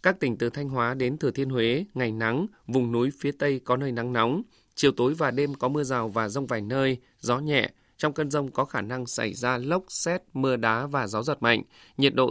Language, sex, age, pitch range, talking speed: Vietnamese, male, 20-39, 120-145 Hz, 245 wpm